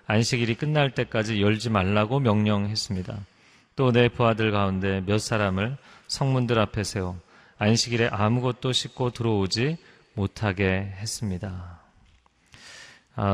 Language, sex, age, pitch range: Korean, male, 40-59, 105-130 Hz